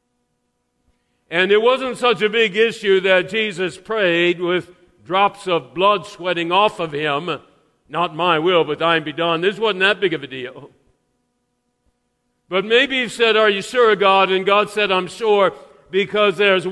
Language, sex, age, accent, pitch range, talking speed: English, male, 50-69, American, 165-215 Hz, 170 wpm